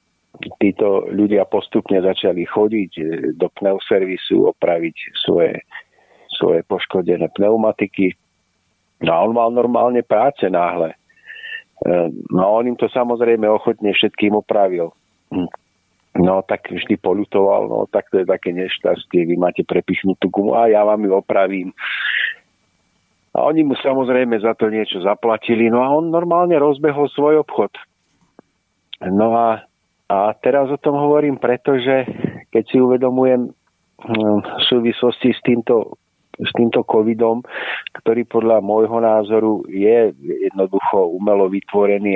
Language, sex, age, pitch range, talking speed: Slovak, male, 50-69, 100-125 Hz, 125 wpm